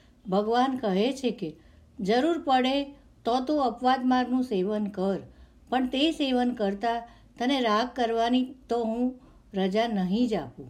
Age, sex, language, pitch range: 60-79, female, Gujarati, 195-255 Hz